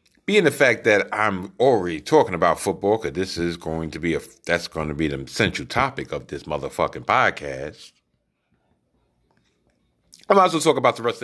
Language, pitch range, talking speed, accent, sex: English, 85-140 Hz, 175 wpm, American, male